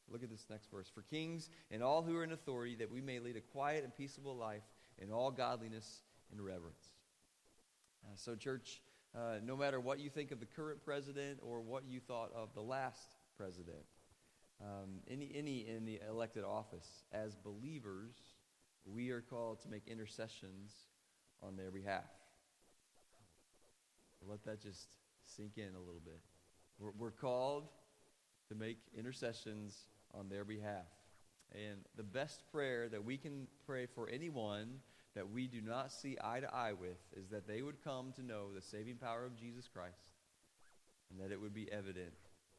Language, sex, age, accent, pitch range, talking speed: English, male, 30-49, American, 100-125 Hz, 170 wpm